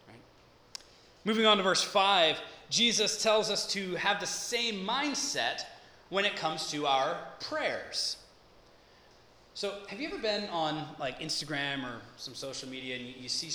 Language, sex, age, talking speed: English, male, 20-39, 155 wpm